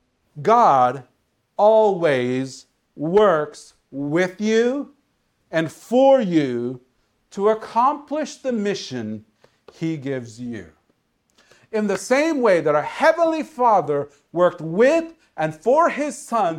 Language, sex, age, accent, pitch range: Japanese, male, 50-69, American, 140-230 Hz